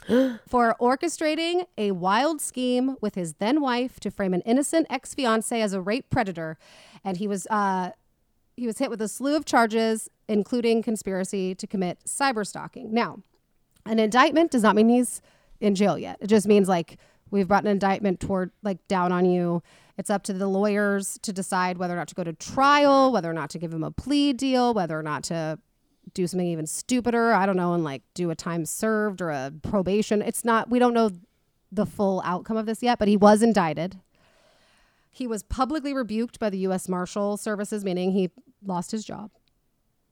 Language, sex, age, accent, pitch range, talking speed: English, female, 30-49, American, 180-230 Hz, 195 wpm